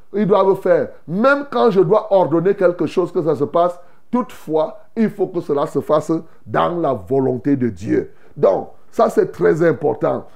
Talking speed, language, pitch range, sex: 180 wpm, French, 150-210 Hz, male